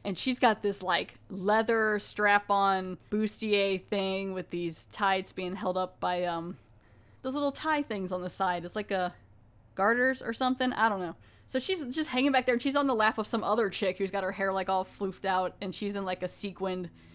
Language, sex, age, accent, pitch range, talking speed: English, female, 20-39, American, 190-240 Hz, 215 wpm